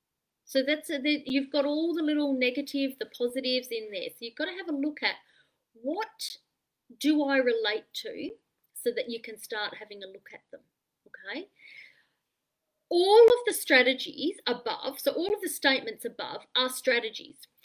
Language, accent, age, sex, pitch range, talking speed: English, Australian, 30-49, female, 235-330 Hz, 175 wpm